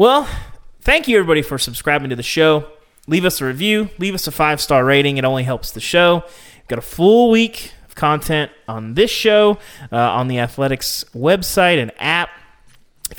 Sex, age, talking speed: male, 30-49, 185 wpm